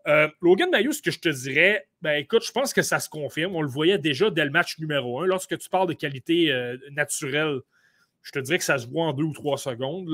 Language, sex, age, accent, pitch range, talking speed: French, male, 30-49, Canadian, 140-180 Hz, 260 wpm